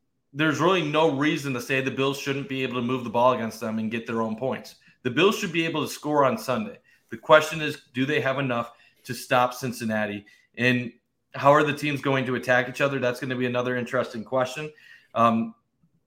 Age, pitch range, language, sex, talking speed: 30-49, 125-150 Hz, English, male, 220 wpm